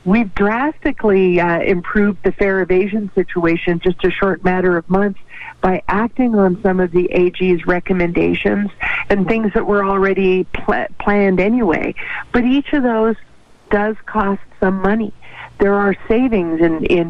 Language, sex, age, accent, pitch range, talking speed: English, female, 50-69, American, 180-220 Hz, 150 wpm